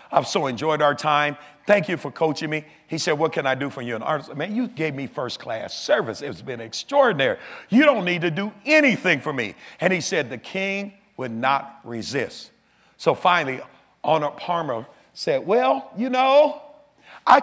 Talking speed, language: 190 wpm, English